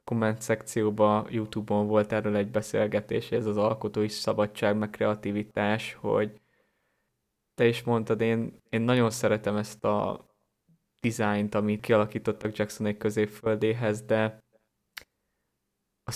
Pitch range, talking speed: 105-115 Hz, 115 wpm